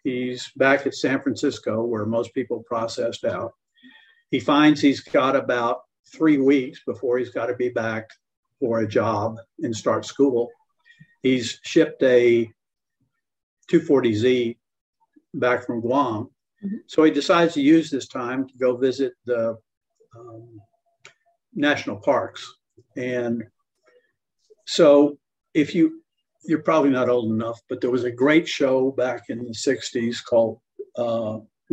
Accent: American